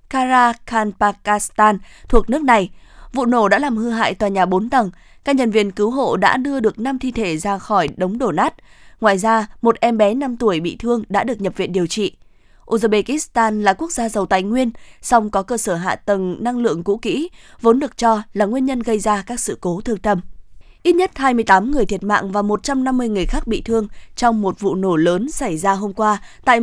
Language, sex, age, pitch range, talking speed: Vietnamese, female, 20-39, 195-240 Hz, 220 wpm